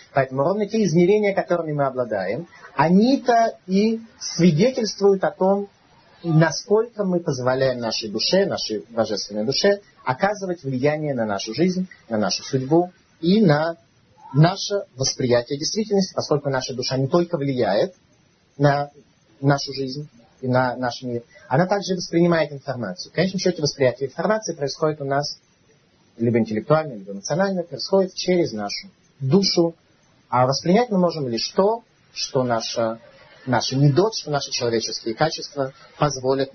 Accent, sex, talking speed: native, male, 130 wpm